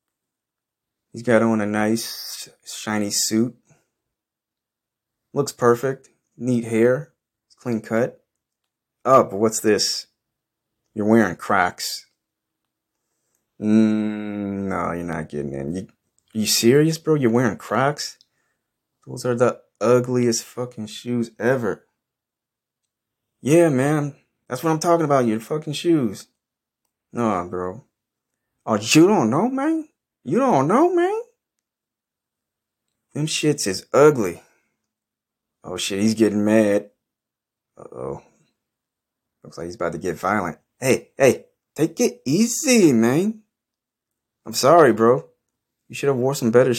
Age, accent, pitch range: 30-49, American, 110-135 Hz